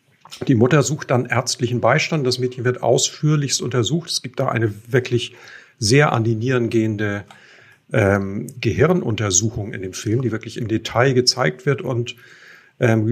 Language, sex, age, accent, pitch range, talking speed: German, male, 50-69, German, 115-130 Hz, 155 wpm